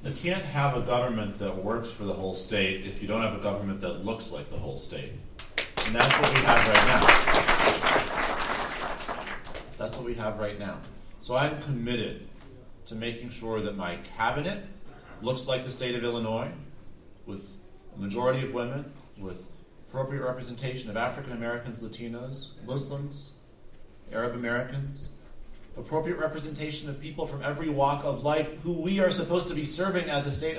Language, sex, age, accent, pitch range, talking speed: English, male, 40-59, American, 110-140 Hz, 165 wpm